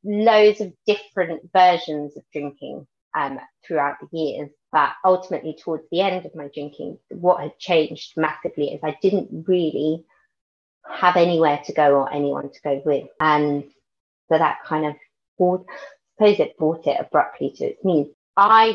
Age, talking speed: 30-49, 165 wpm